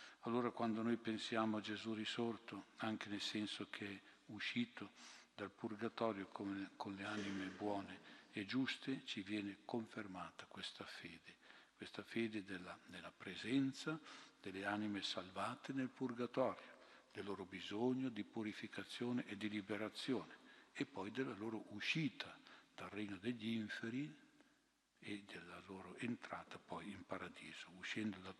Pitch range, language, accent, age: 100-115 Hz, Italian, native, 60-79